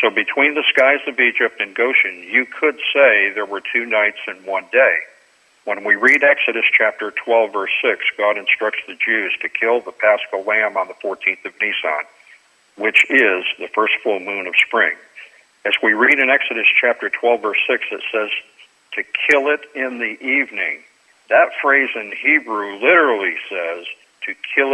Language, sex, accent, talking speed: English, male, American, 175 wpm